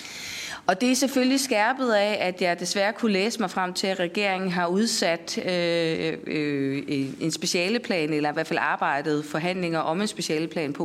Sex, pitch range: female, 160-205 Hz